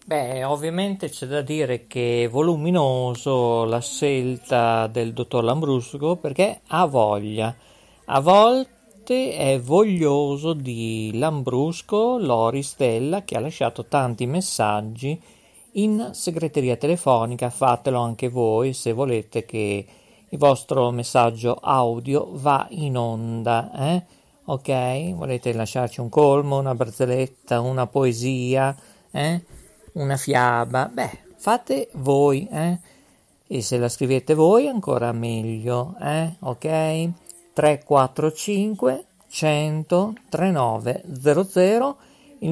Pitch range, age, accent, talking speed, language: 120-155 Hz, 50-69, native, 105 wpm, Italian